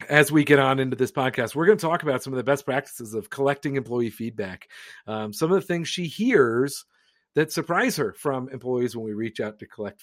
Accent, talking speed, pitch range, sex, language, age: American, 235 wpm, 115-155 Hz, male, English, 40-59